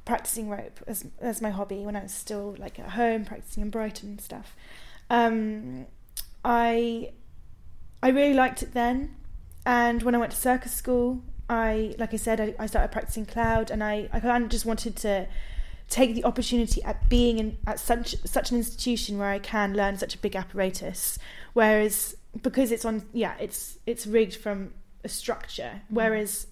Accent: British